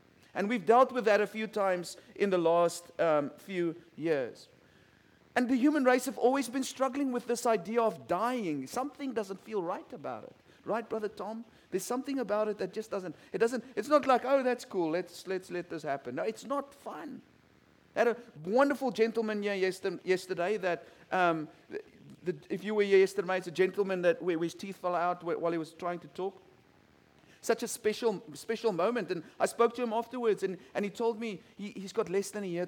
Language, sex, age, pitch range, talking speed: English, male, 50-69, 185-240 Hz, 210 wpm